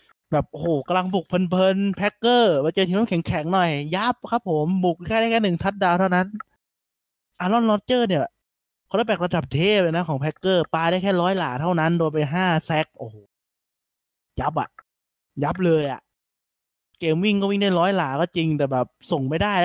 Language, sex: Thai, male